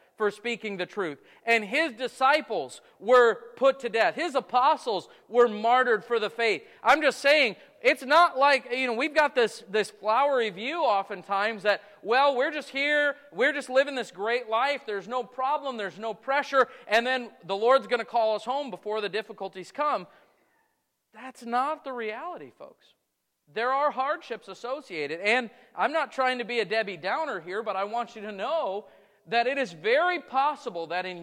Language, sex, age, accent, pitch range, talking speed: English, male, 40-59, American, 195-265 Hz, 185 wpm